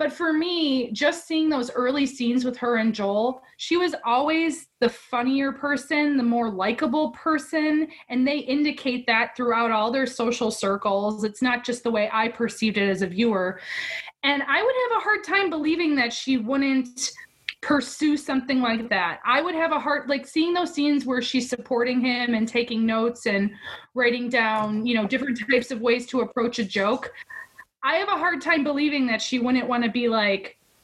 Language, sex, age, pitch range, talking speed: English, female, 20-39, 235-305 Hz, 195 wpm